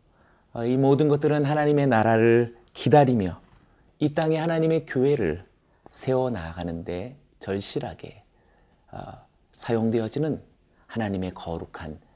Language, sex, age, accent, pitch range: Korean, male, 30-49, native, 95-145 Hz